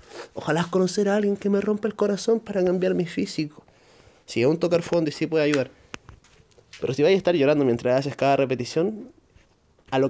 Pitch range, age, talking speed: 130-170 Hz, 20-39, 215 wpm